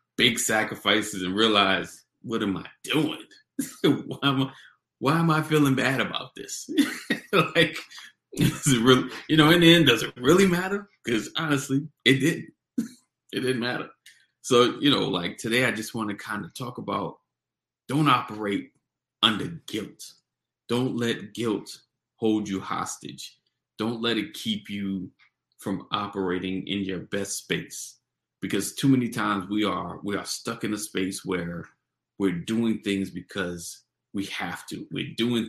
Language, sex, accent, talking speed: English, male, American, 155 wpm